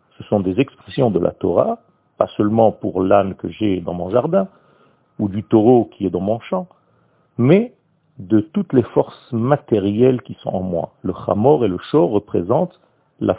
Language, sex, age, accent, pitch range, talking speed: French, male, 50-69, French, 100-140 Hz, 185 wpm